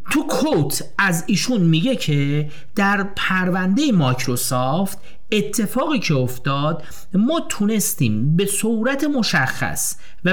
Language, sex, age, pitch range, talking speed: Persian, male, 40-59, 135-200 Hz, 105 wpm